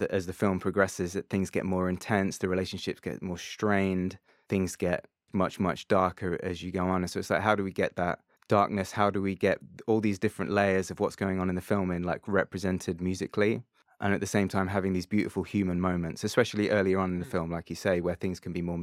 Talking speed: 240 wpm